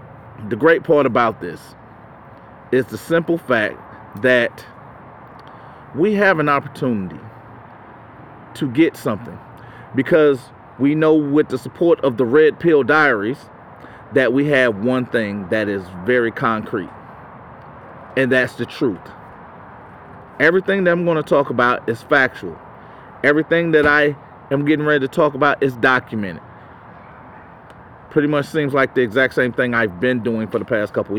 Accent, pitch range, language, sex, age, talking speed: American, 120-145 Hz, English, male, 40-59, 145 wpm